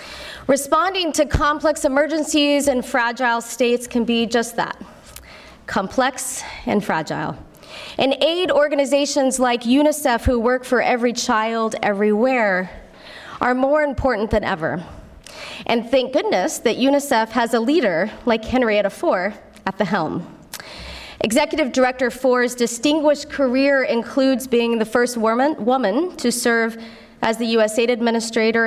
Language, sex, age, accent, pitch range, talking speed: English, female, 20-39, American, 210-265 Hz, 125 wpm